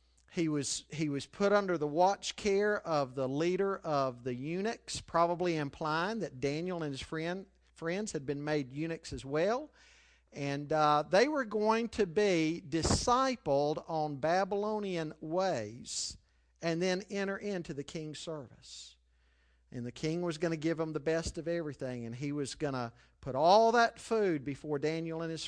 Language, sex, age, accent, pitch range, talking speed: English, male, 50-69, American, 135-175 Hz, 170 wpm